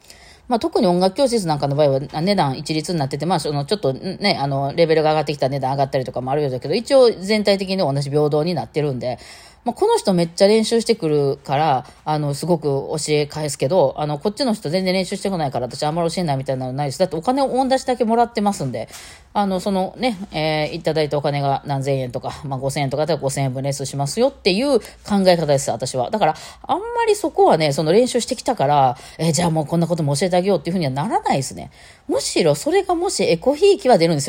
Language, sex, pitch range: Japanese, female, 145-205 Hz